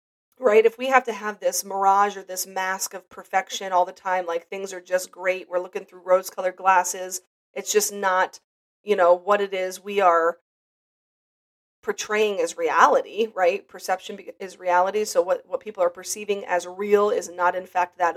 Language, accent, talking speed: English, American, 190 wpm